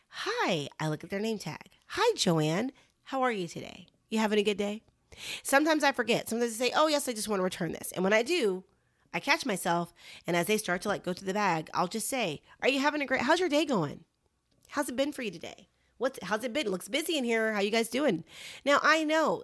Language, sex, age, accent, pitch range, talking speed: English, female, 30-49, American, 175-275 Hz, 255 wpm